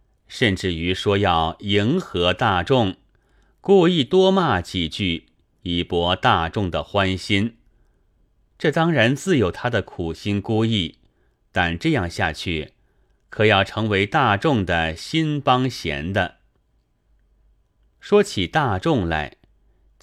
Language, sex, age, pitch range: Chinese, male, 30-49, 90-135 Hz